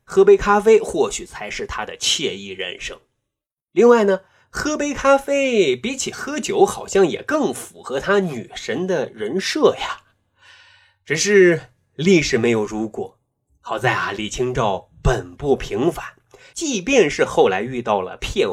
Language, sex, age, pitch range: Chinese, male, 30-49, 150-245 Hz